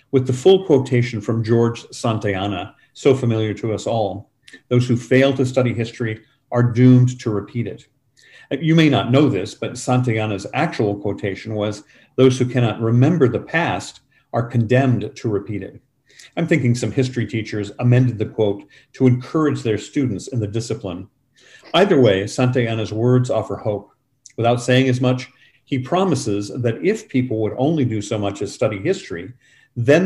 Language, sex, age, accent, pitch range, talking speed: English, male, 50-69, American, 110-135 Hz, 165 wpm